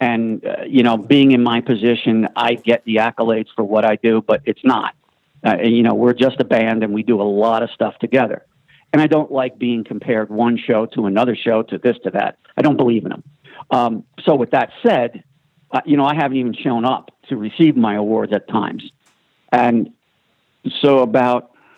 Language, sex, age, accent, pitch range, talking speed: English, male, 50-69, American, 110-135 Hz, 210 wpm